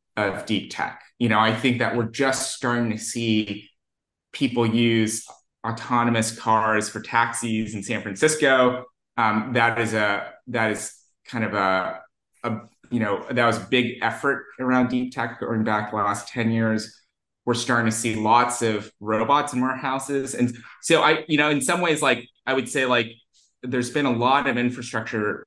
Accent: American